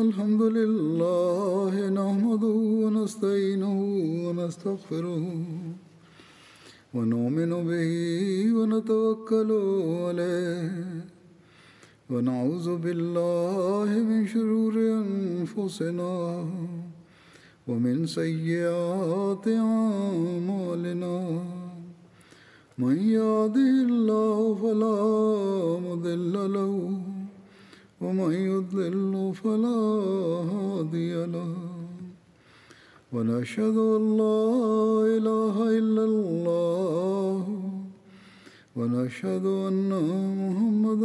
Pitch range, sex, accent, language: 170-215 Hz, male, native, Malayalam